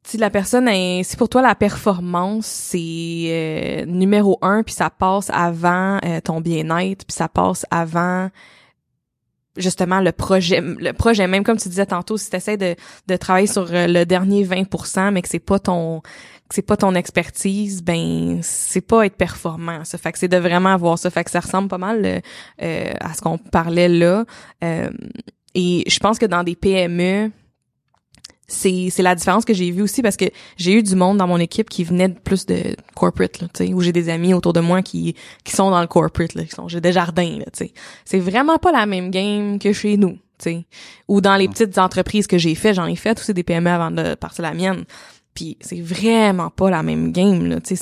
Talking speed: 215 wpm